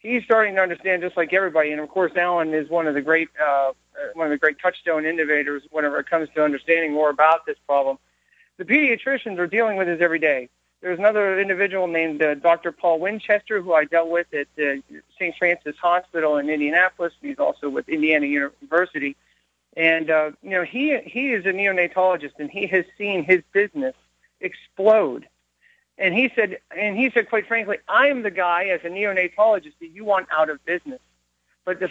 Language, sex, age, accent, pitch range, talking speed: English, male, 50-69, American, 160-205 Hz, 195 wpm